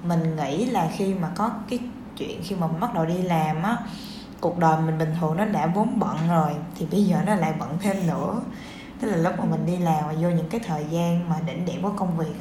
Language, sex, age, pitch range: Vietnamese, female, 10-29, 170-215 Hz